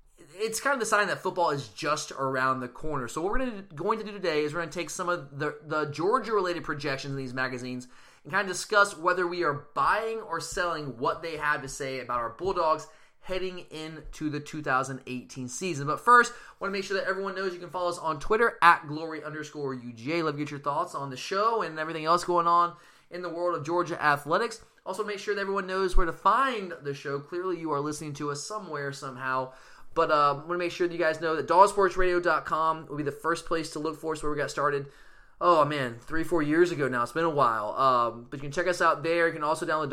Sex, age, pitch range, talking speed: male, 20-39, 145-180 Hz, 245 wpm